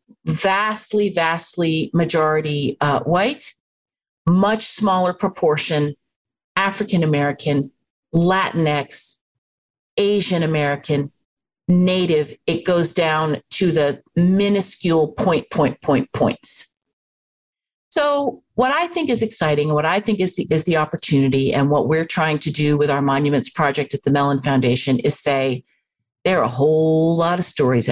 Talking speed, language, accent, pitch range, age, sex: 125 wpm, English, American, 145-175 Hz, 50-69, female